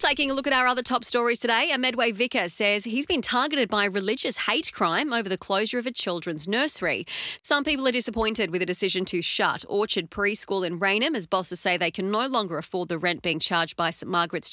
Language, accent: English, Australian